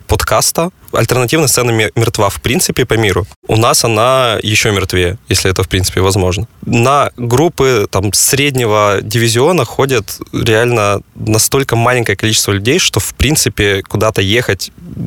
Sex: male